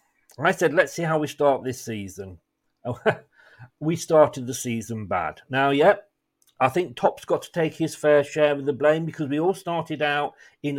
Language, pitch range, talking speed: English, 135-180 Hz, 190 wpm